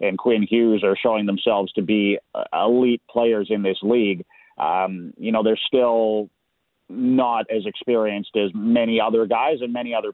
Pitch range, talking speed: 105-125 Hz, 165 wpm